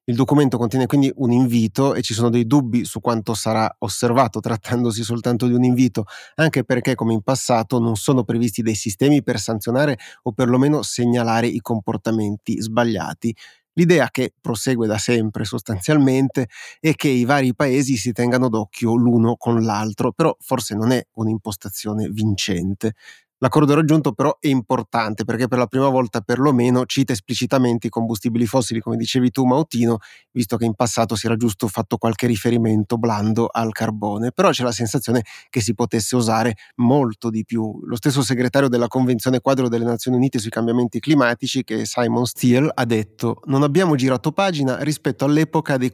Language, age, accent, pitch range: Italian, 30-49, native, 115-130 Hz